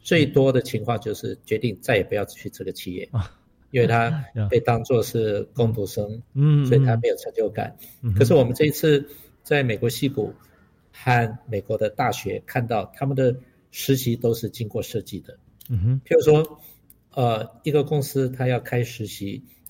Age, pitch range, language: 50-69, 110-140 Hz, Chinese